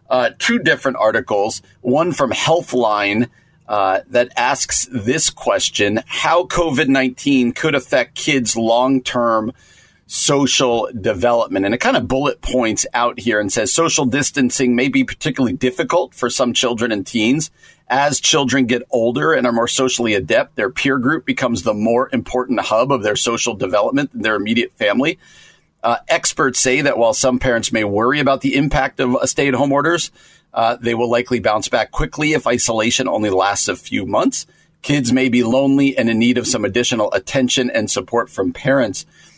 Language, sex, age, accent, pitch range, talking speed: English, male, 40-59, American, 120-140 Hz, 170 wpm